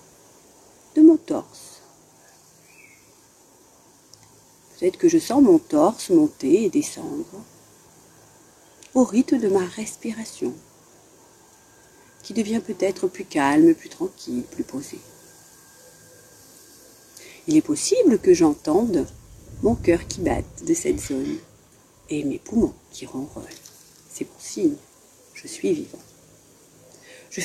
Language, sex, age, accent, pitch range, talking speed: French, female, 50-69, French, 225-335 Hz, 110 wpm